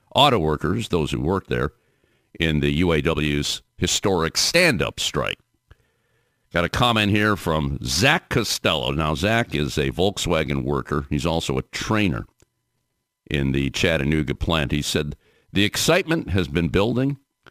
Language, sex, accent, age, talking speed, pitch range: English, male, American, 50-69, 135 wpm, 80-115 Hz